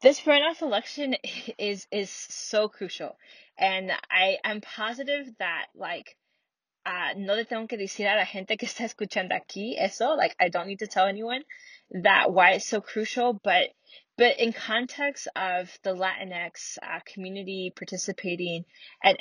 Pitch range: 185-225 Hz